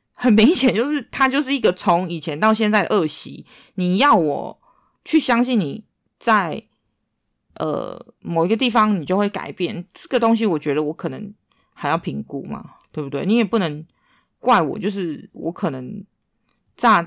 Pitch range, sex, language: 160-210 Hz, female, Chinese